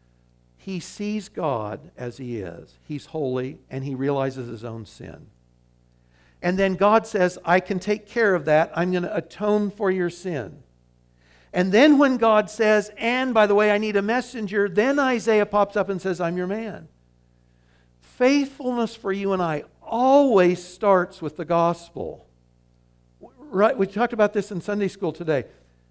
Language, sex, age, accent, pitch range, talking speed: English, male, 60-79, American, 135-210 Hz, 165 wpm